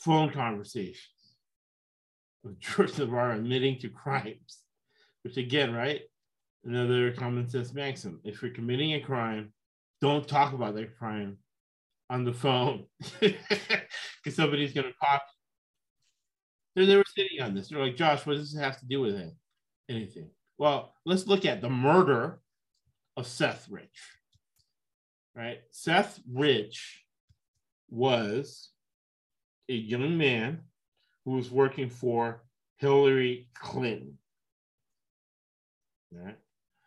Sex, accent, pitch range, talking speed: male, American, 115-145 Hz, 115 wpm